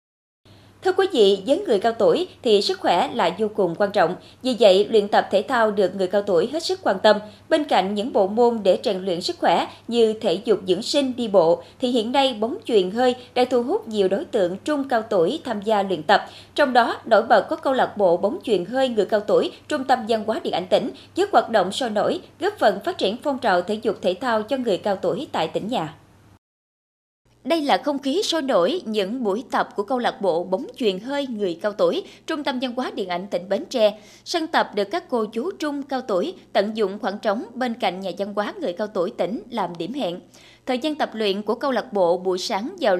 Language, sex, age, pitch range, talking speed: Vietnamese, female, 20-39, 200-280 Hz, 240 wpm